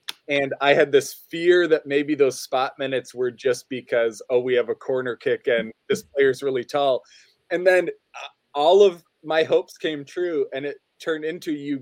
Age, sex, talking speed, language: 20-39, male, 190 wpm, English